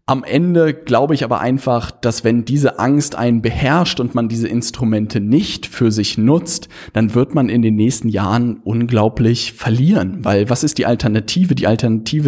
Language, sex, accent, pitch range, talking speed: German, male, German, 110-130 Hz, 175 wpm